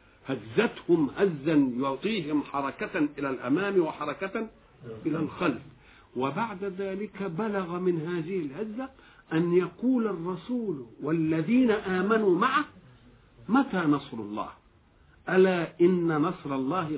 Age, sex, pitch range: 50-69, male, 160-240 Hz